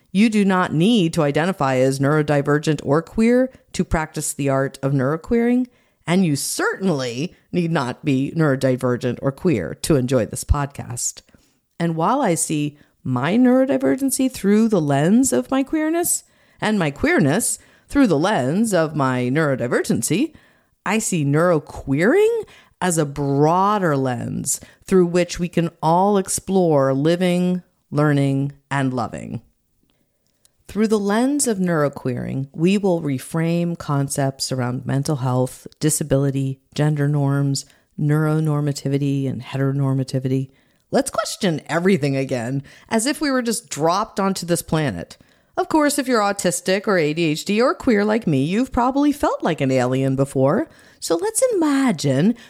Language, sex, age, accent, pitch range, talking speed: English, female, 50-69, American, 135-210 Hz, 135 wpm